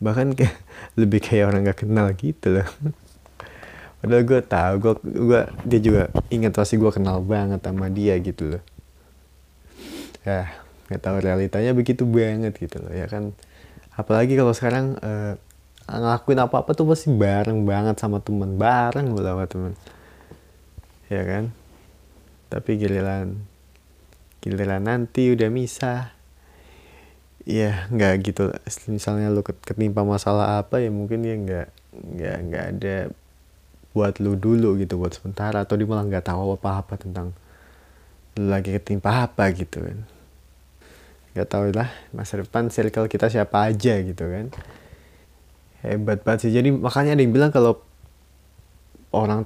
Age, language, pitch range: 20-39, Indonesian, 85-110 Hz